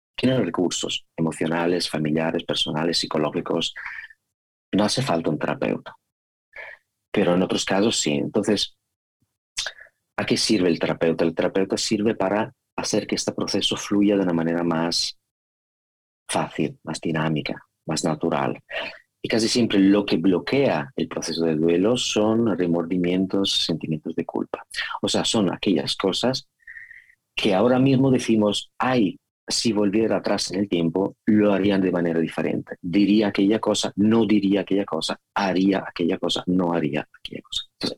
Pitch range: 85-105 Hz